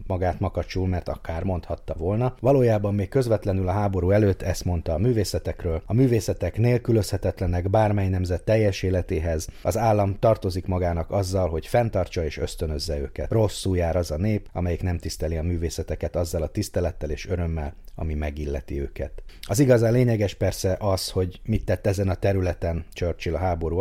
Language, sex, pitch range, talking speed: Hungarian, male, 85-100 Hz, 165 wpm